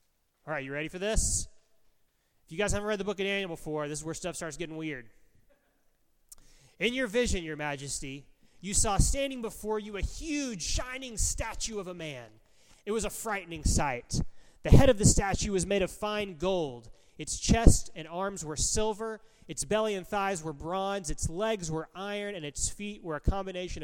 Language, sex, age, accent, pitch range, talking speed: English, male, 30-49, American, 150-210 Hz, 195 wpm